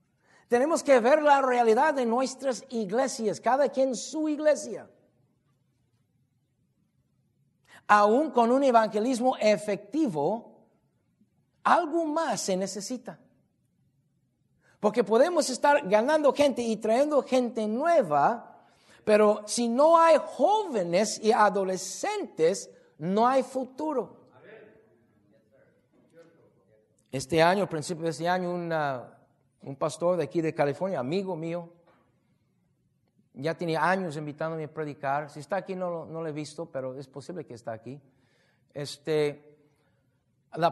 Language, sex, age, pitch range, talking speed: English, male, 50-69, 145-230 Hz, 115 wpm